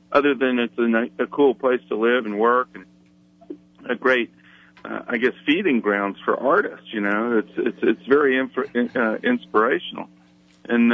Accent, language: American, English